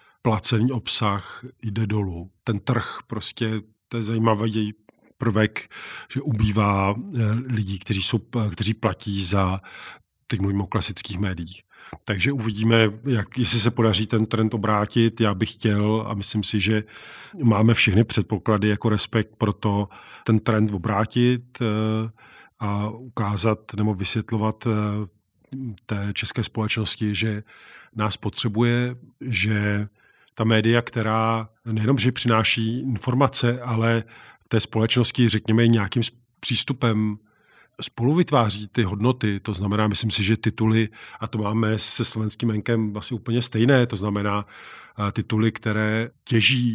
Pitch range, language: 105-115 Hz, Slovak